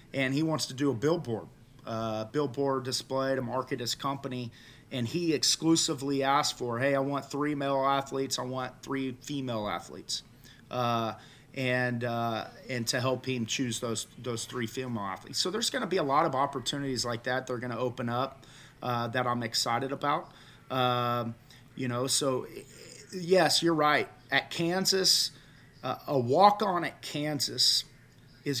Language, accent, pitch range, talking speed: English, American, 120-145 Hz, 170 wpm